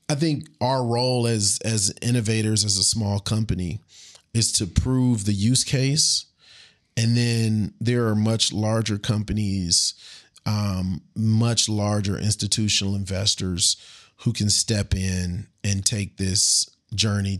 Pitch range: 105-120 Hz